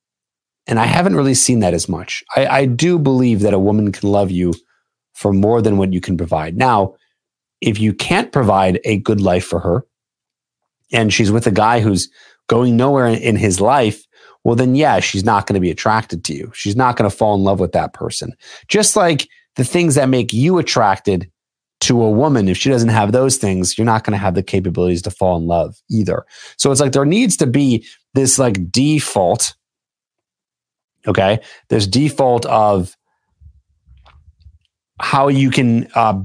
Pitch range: 95-135 Hz